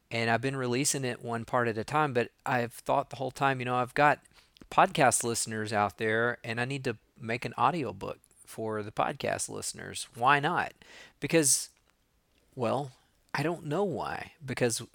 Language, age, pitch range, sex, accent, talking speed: English, 40-59, 115-135 Hz, male, American, 180 wpm